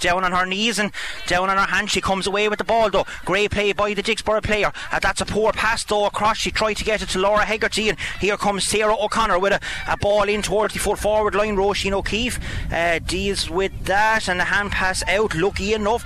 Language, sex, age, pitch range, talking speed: English, male, 30-49, 190-210 Hz, 245 wpm